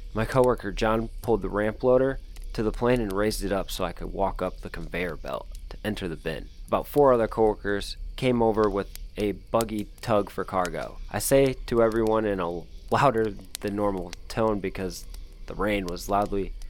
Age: 20-39